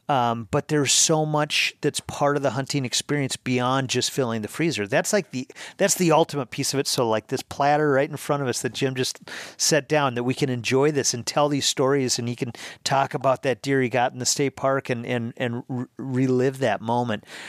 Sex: male